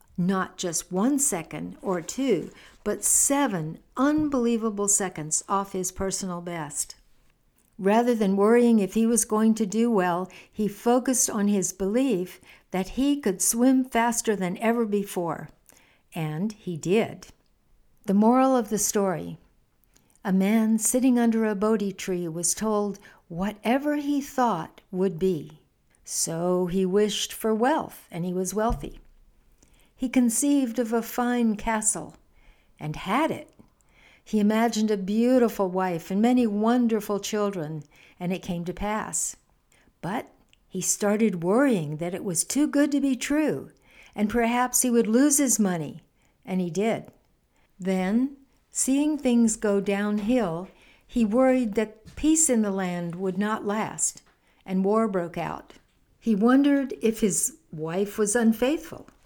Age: 60-79